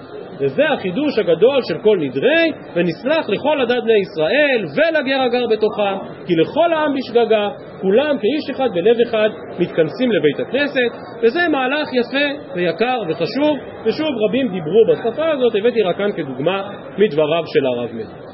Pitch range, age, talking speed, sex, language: 180-255 Hz, 40-59, 145 wpm, male, Hebrew